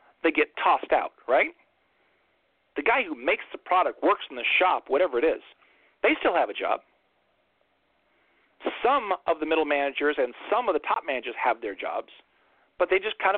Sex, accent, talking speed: male, American, 185 wpm